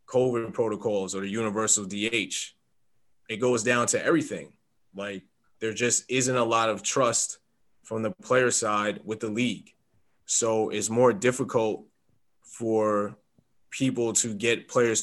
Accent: American